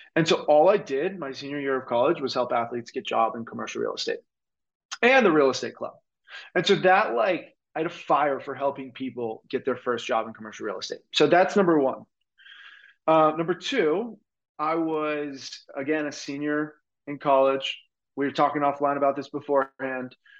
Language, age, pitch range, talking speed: English, 20-39, 130-160 Hz, 190 wpm